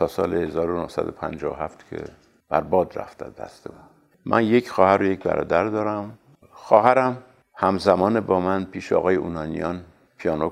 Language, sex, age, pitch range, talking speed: Persian, male, 60-79, 95-110 Hz, 125 wpm